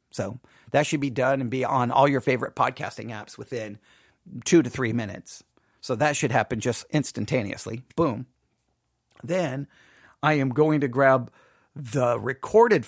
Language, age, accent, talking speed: English, 40-59, American, 155 wpm